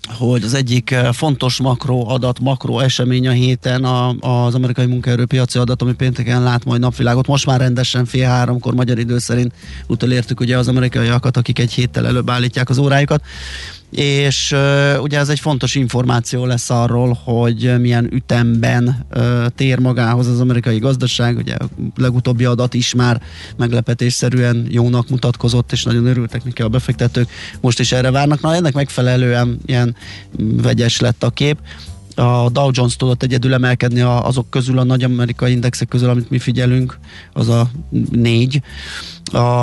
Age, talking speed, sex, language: 20-39, 155 wpm, male, Hungarian